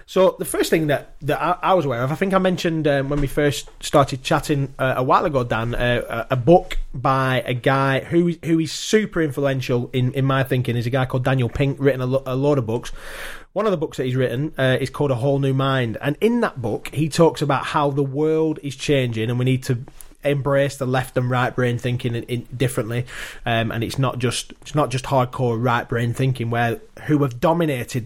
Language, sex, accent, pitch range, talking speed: English, male, British, 125-145 Hz, 230 wpm